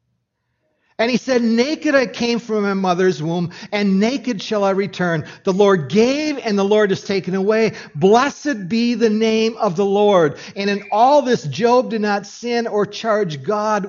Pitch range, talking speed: 170-230 Hz, 180 wpm